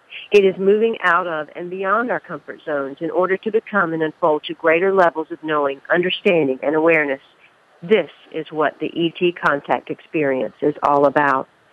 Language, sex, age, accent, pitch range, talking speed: English, female, 50-69, American, 150-185 Hz, 175 wpm